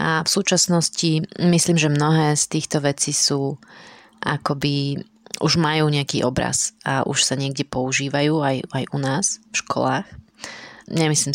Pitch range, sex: 140-170 Hz, female